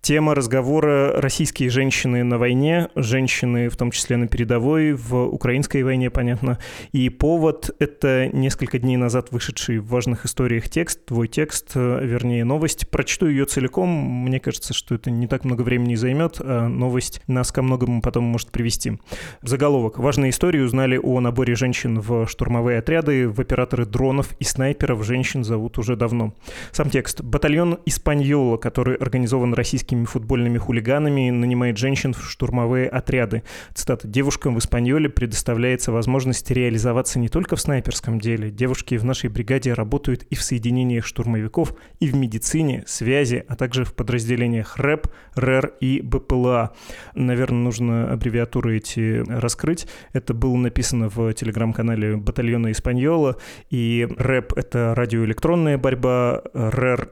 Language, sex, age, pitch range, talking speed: Russian, male, 20-39, 120-135 Hz, 140 wpm